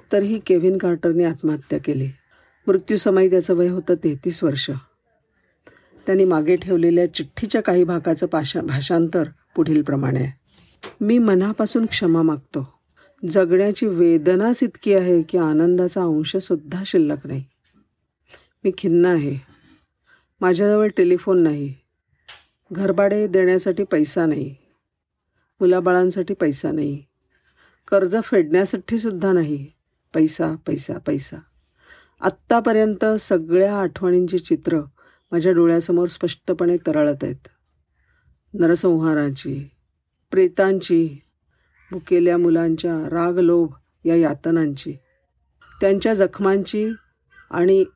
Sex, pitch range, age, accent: female, 150-190 Hz, 50-69, native